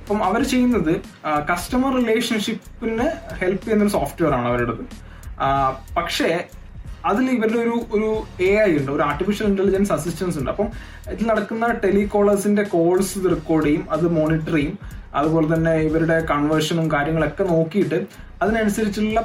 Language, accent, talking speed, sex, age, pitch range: Malayalam, native, 125 wpm, male, 20-39, 165-215 Hz